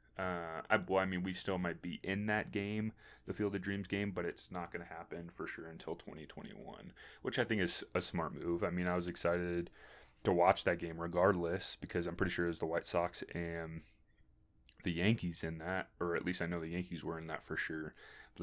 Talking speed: 230 wpm